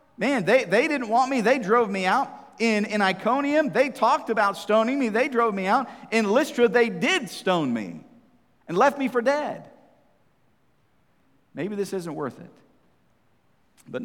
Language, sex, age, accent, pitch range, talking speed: English, male, 50-69, American, 155-230 Hz, 165 wpm